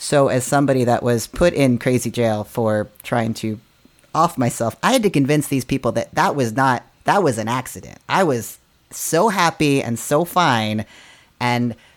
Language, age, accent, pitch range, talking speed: English, 30-49, American, 115-140 Hz, 180 wpm